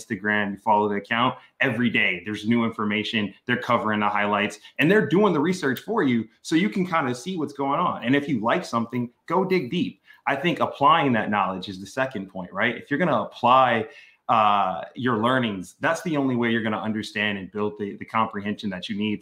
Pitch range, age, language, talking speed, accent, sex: 110-145 Hz, 20-39, English, 225 wpm, American, male